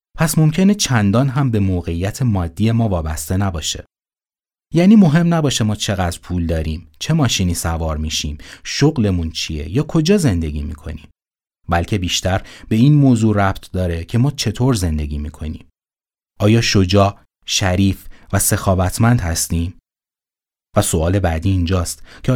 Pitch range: 85-115 Hz